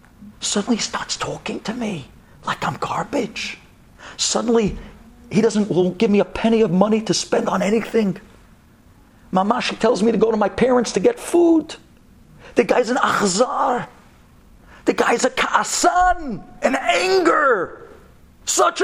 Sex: male